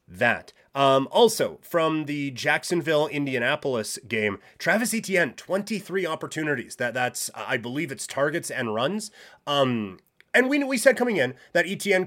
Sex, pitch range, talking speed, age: male, 130-180 Hz, 145 wpm, 30-49